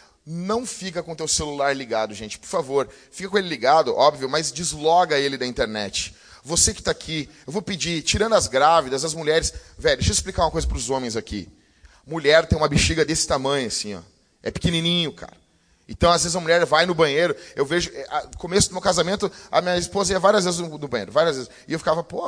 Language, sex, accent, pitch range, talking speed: Portuguese, male, Brazilian, 125-170 Hz, 220 wpm